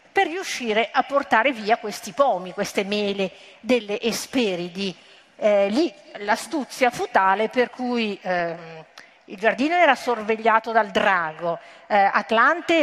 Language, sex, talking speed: Italian, female, 120 wpm